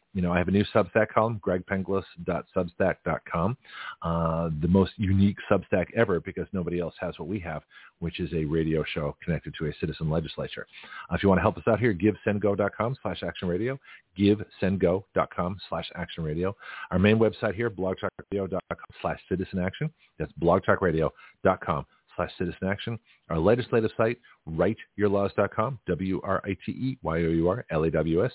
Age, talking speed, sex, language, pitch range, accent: 40-59, 140 wpm, male, English, 90-115 Hz, American